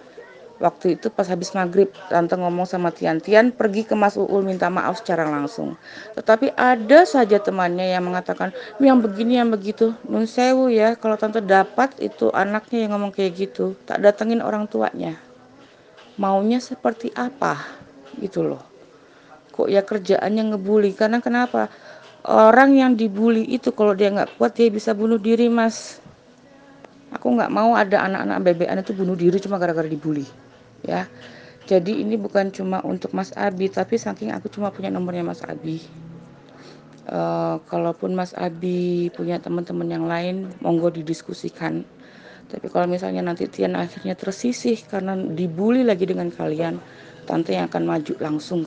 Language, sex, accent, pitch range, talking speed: Indonesian, female, native, 165-220 Hz, 155 wpm